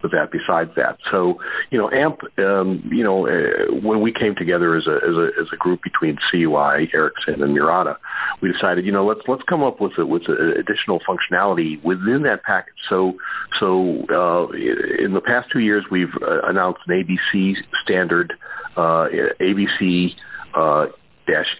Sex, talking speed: male, 170 wpm